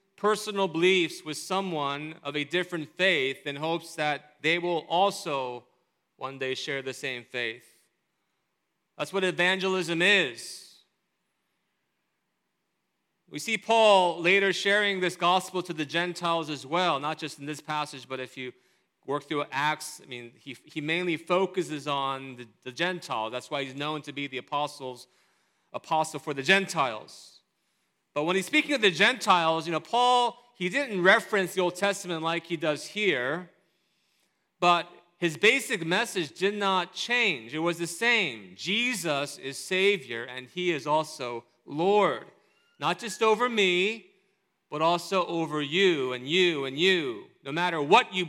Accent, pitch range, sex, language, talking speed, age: American, 150-195 Hz, male, English, 155 wpm, 30-49